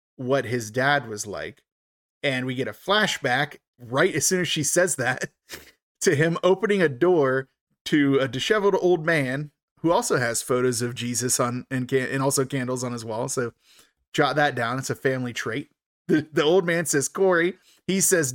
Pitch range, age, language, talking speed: 125-155 Hz, 20-39, English, 190 wpm